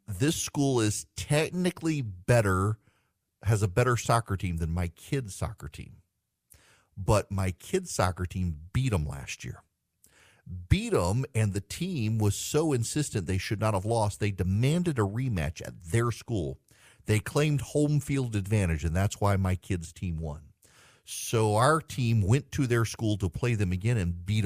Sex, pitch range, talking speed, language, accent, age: male, 95-130 Hz, 170 wpm, English, American, 50-69